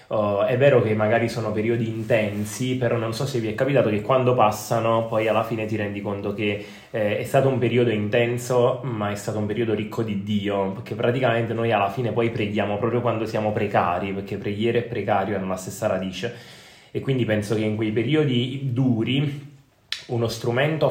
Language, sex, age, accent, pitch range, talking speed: Italian, male, 20-39, native, 105-125 Hz, 190 wpm